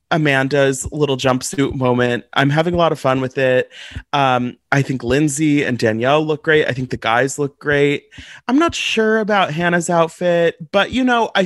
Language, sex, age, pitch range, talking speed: English, male, 30-49, 130-170 Hz, 190 wpm